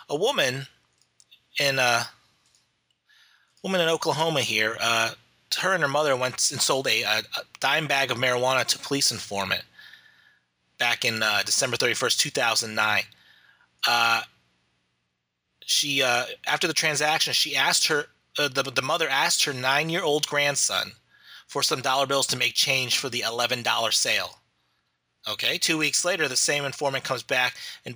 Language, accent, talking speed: English, American, 165 wpm